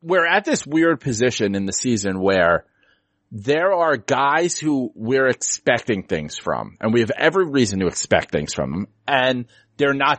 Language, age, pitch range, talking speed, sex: English, 30-49, 115-150 Hz, 175 wpm, male